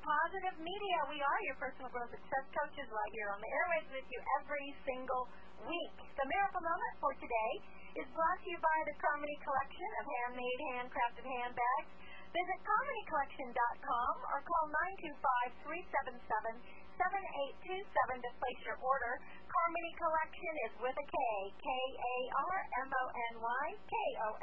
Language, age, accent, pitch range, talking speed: English, 40-59, American, 235-315 Hz, 155 wpm